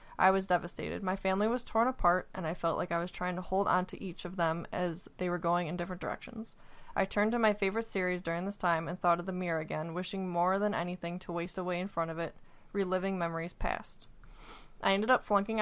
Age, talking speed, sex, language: 20-39, 240 wpm, female, English